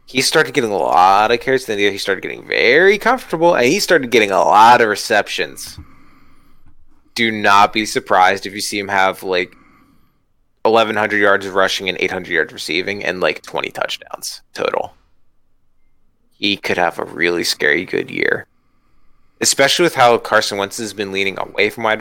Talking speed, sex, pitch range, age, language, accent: 175 wpm, male, 100-140 Hz, 20-39, English, American